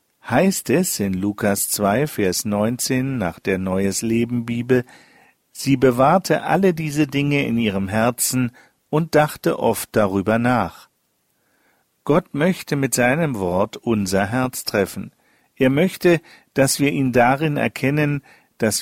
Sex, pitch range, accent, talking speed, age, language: male, 110-145 Hz, German, 125 wpm, 50-69, German